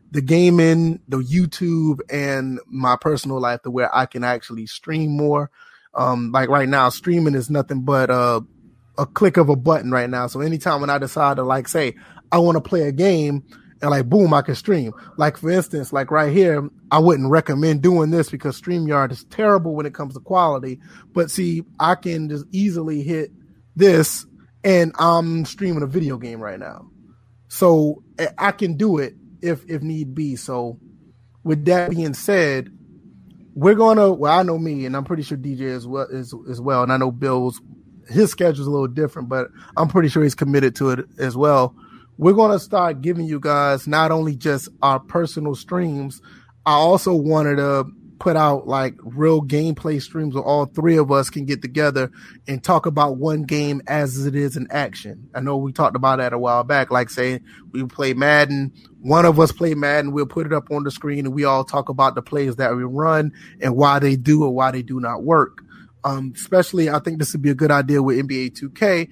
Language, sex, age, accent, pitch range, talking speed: English, male, 30-49, American, 135-165 Hz, 205 wpm